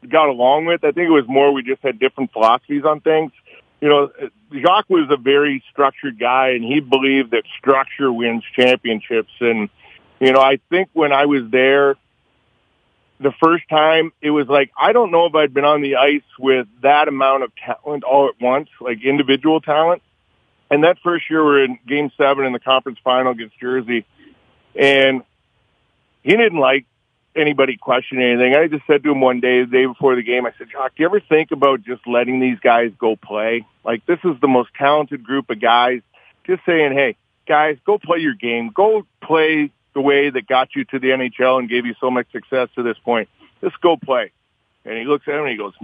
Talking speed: 210 wpm